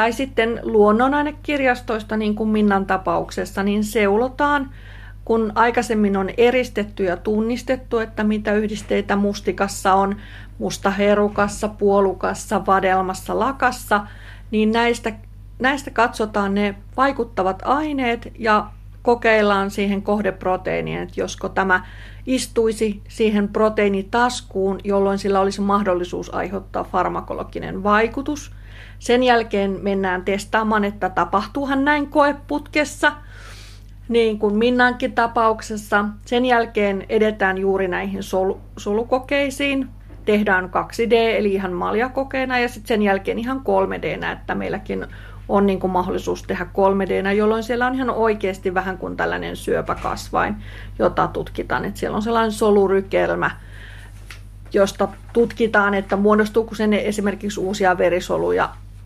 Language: Finnish